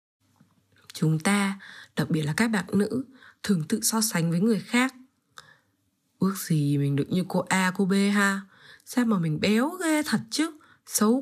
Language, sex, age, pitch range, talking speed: Vietnamese, female, 20-39, 170-225 Hz, 175 wpm